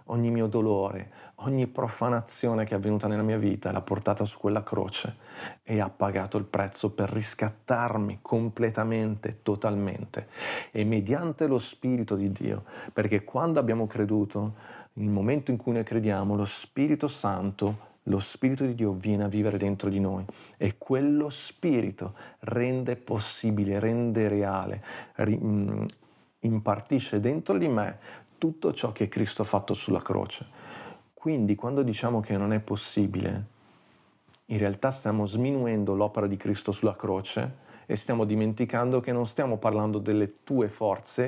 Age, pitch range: 40-59, 100-120 Hz